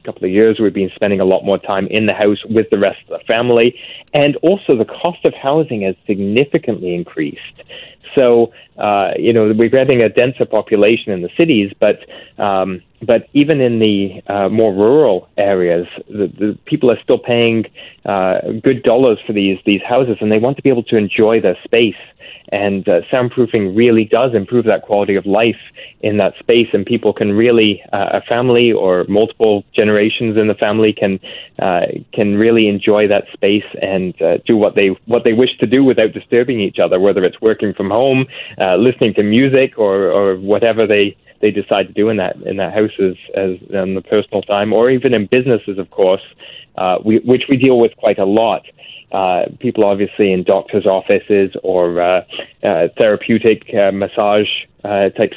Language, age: English, 30-49